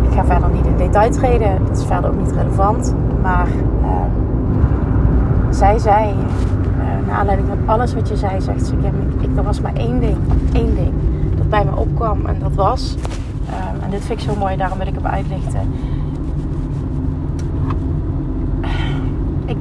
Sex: female